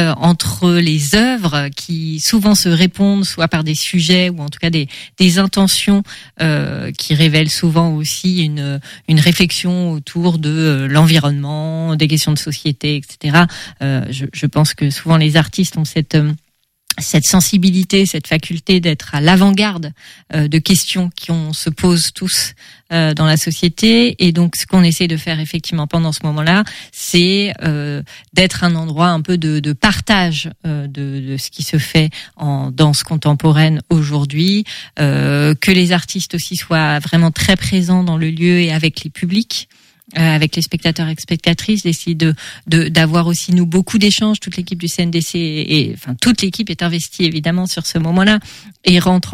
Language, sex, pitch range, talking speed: French, female, 150-175 Hz, 170 wpm